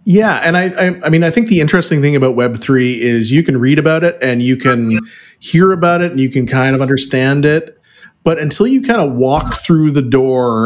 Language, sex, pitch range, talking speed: English, male, 115-145 Hz, 235 wpm